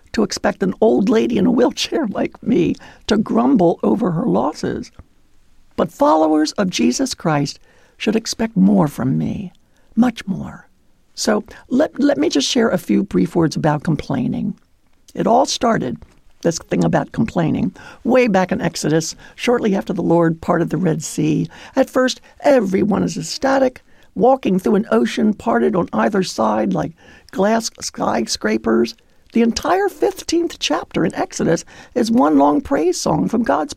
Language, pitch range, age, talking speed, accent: English, 165-265 Hz, 60-79, 155 wpm, American